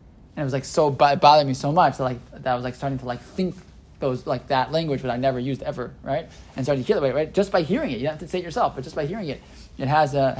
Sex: male